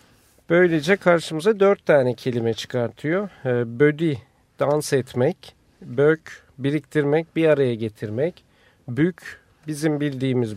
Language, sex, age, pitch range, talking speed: Turkish, male, 50-69, 130-175 Hz, 95 wpm